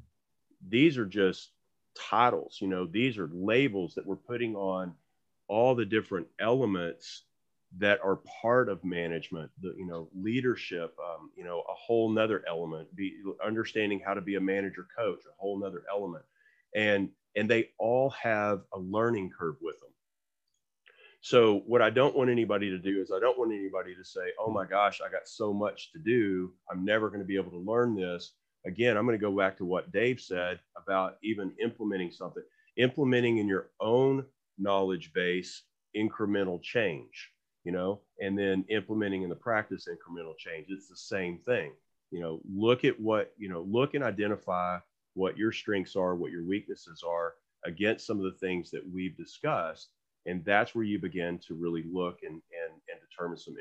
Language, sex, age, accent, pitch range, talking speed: English, male, 30-49, American, 90-110 Hz, 180 wpm